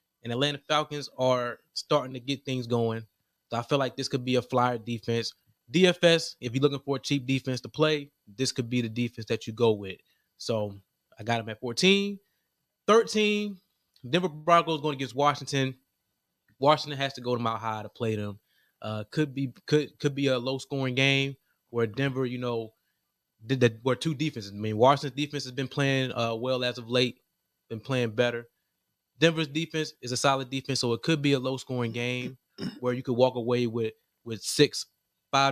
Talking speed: 195 wpm